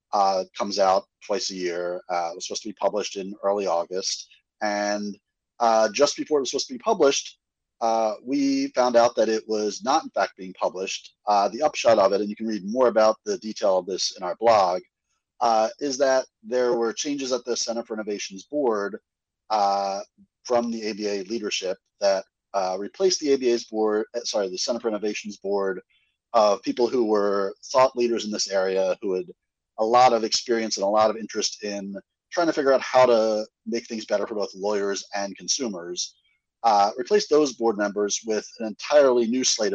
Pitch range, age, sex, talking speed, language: 100-125 Hz, 30-49, male, 195 wpm, English